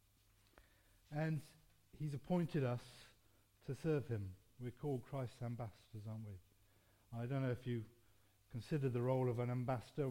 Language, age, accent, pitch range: English, 50-69, British, 100-130 Hz